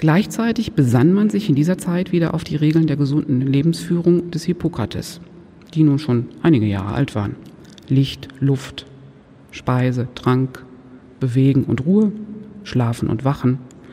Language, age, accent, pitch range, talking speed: German, 50-69, German, 130-175 Hz, 140 wpm